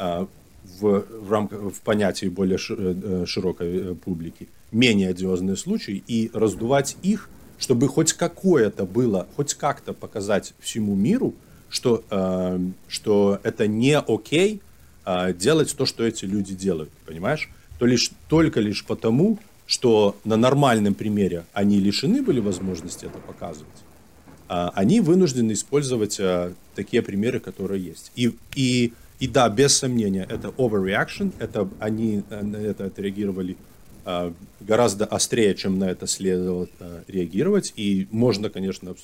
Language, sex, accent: Russian, male, native